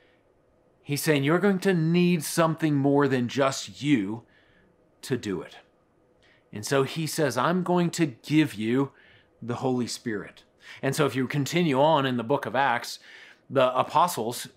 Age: 30-49